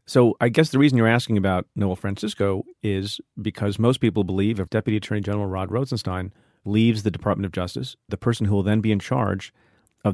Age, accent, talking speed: 40-59, American, 205 wpm